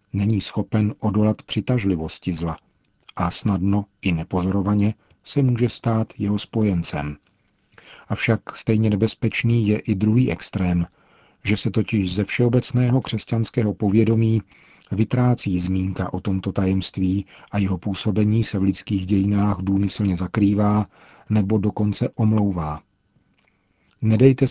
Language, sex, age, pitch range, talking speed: Czech, male, 40-59, 95-110 Hz, 115 wpm